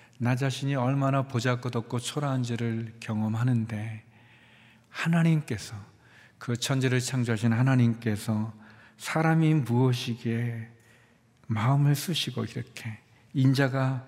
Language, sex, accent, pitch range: Korean, male, native, 115-130 Hz